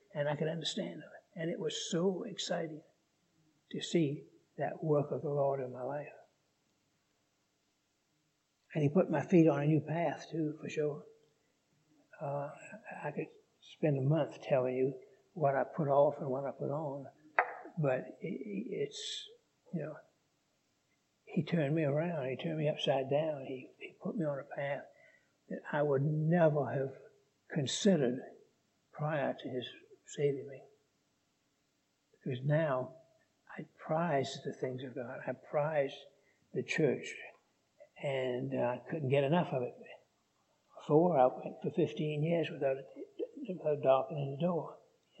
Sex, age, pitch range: male, 60-79, 140-175 Hz